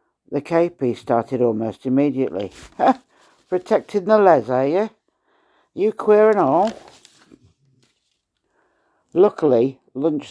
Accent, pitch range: British, 115-145 Hz